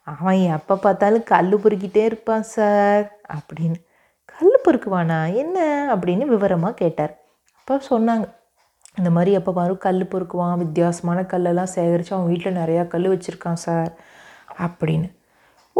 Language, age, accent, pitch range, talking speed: Tamil, 30-49, native, 175-220 Hz, 120 wpm